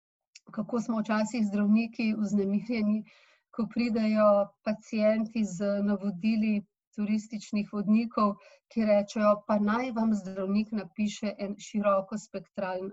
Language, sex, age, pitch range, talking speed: English, female, 40-59, 200-225 Hz, 100 wpm